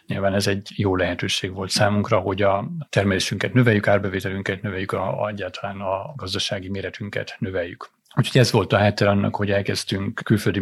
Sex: male